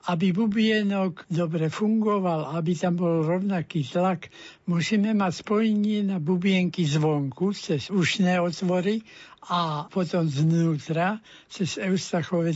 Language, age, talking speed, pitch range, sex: Slovak, 60-79, 110 wpm, 170-200 Hz, male